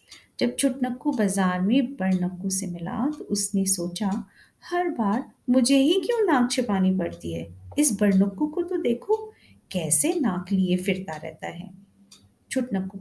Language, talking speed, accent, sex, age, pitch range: Hindi, 145 wpm, native, female, 50-69, 180-245 Hz